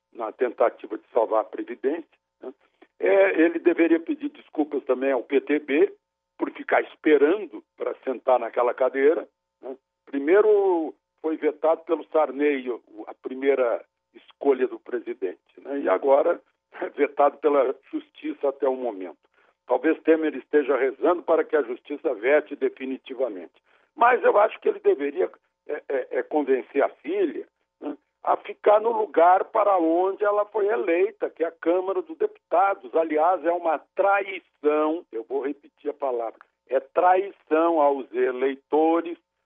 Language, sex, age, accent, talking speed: Portuguese, male, 60-79, Brazilian, 145 wpm